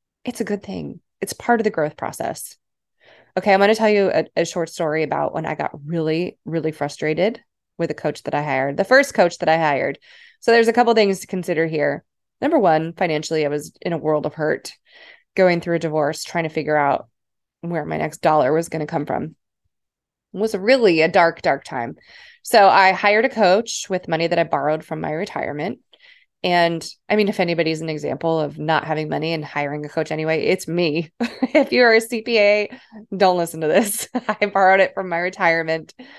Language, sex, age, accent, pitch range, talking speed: English, female, 20-39, American, 155-205 Hz, 210 wpm